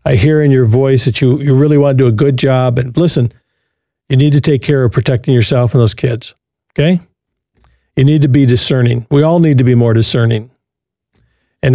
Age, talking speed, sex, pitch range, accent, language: 50-69, 215 wpm, male, 125-150 Hz, American, English